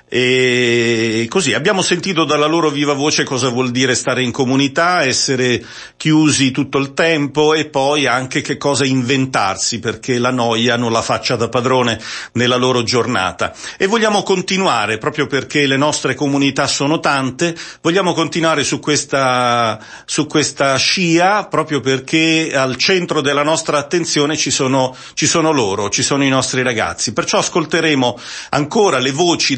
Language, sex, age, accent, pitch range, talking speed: Italian, male, 40-59, native, 125-150 Hz, 150 wpm